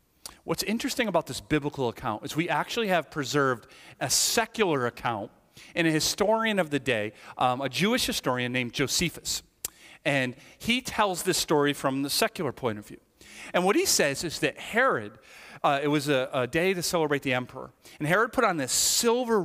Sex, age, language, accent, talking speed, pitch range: male, 40-59, English, American, 185 wpm, 125-185 Hz